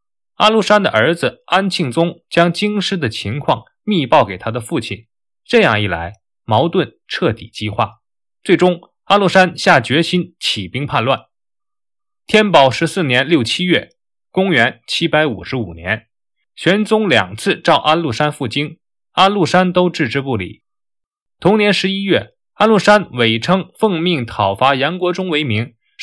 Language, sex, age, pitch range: Chinese, male, 20-39, 120-195 Hz